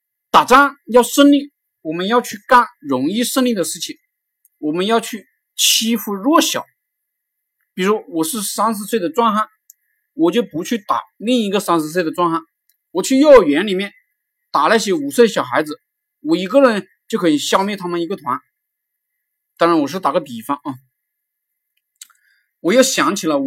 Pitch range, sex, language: 185-285 Hz, male, Chinese